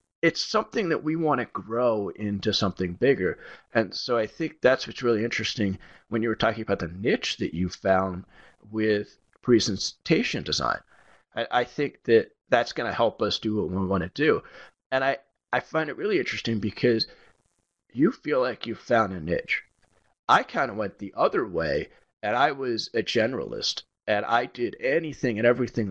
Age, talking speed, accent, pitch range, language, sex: 30-49, 175 wpm, American, 95-115 Hz, English, male